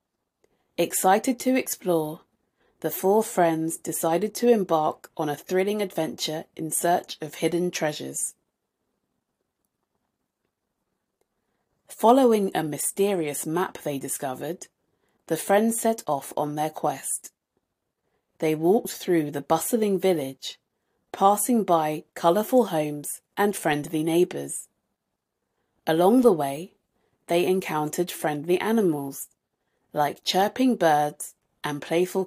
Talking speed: 105 wpm